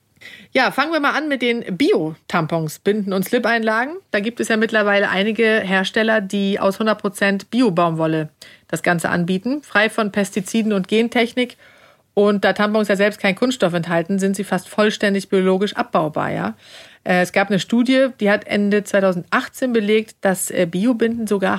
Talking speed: 160 wpm